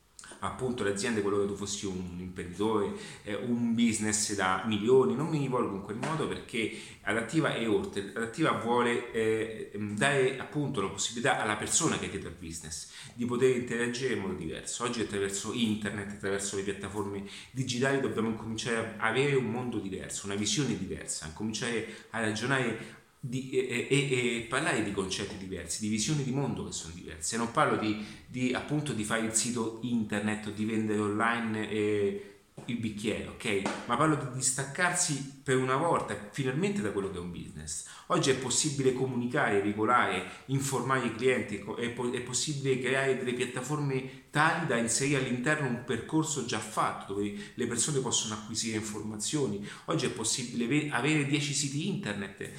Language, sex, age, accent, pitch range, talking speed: Italian, male, 30-49, native, 105-130 Hz, 160 wpm